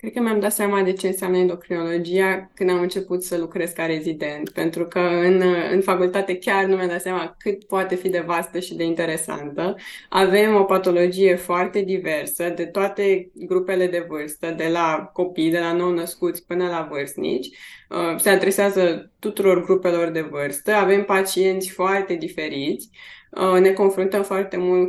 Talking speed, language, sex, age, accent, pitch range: 160 wpm, Romanian, female, 20-39, native, 175-205 Hz